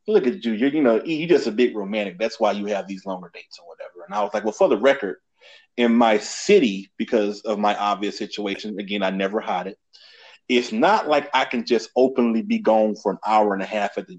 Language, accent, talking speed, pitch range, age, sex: English, American, 245 wpm, 110-175 Hz, 30-49, male